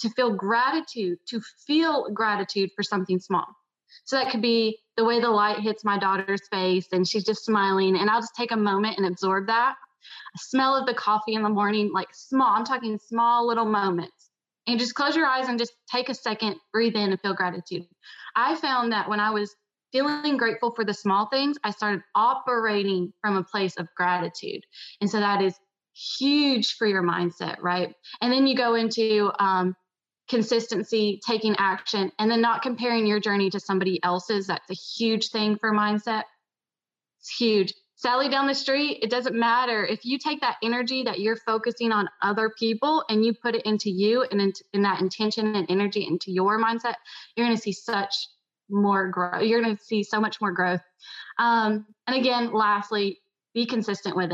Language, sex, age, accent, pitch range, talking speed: English, female, 20-39, American, 195-235 Hz, 190 wpm